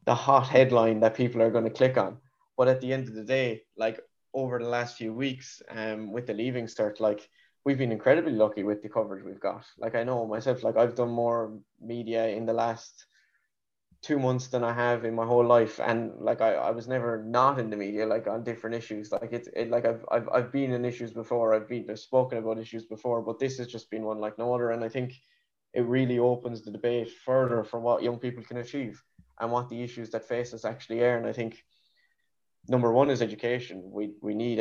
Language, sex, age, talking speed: English, male, 20-39, 230 wpm